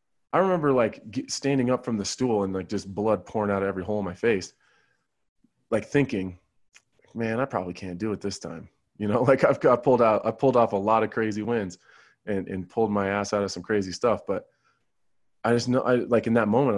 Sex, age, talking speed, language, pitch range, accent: male, 20-39, 225 wpm, English, 100-125 Hz, American